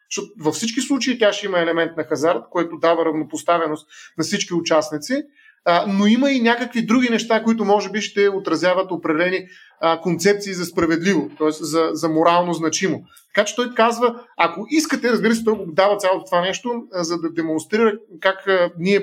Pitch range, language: 170-220 Hz, Bulgarian